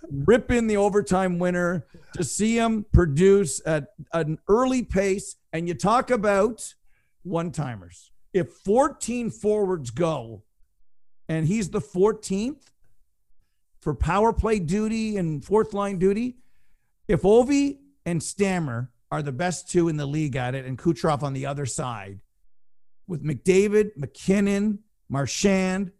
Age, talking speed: 50-69, 130 wpm